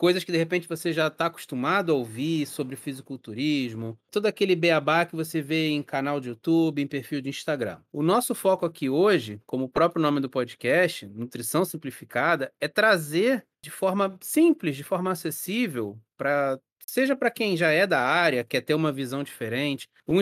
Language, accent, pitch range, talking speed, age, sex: Portuguese, Brazilian, 140-195 Hz, 180 wpm, 30-49, male